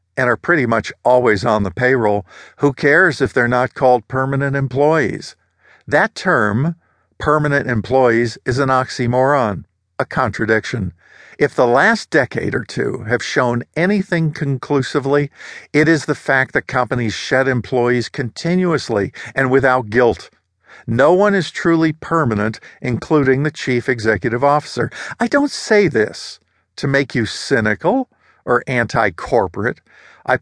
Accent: American